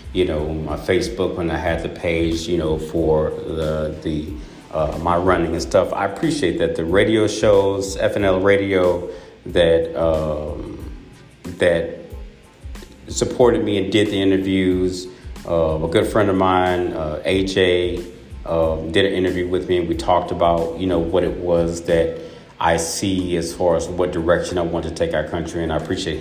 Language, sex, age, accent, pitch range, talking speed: English, male, 30-49, American, 80-90 Hz, 175 wpm